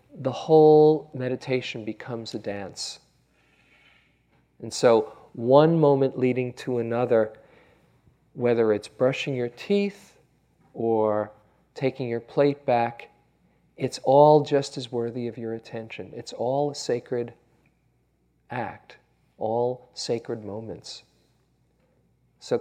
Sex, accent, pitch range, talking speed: male, American, 115-140 Hz, 105 wpm